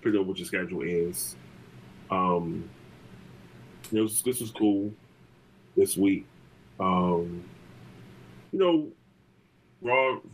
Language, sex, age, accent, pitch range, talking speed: English, male, 20-39, American, 65-100 Hz, 105 wpm